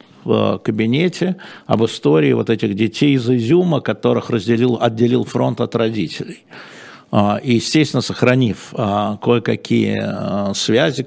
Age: 50-69